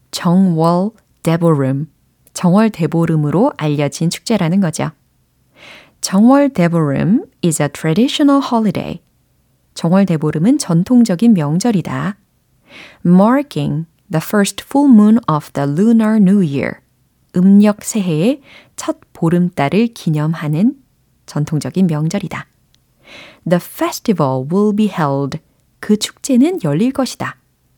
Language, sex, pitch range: Korean, female, 160-230 Hz